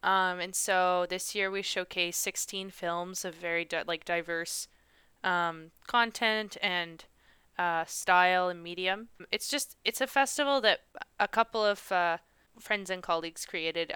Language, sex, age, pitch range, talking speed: English, female, 20-39, 175-200 Hz, 150 wpm